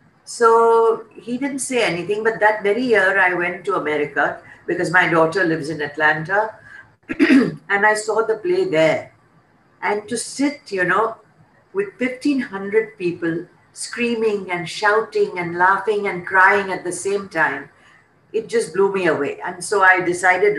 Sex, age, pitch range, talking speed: female, 50-69, 165-215 Hz, 155 wpm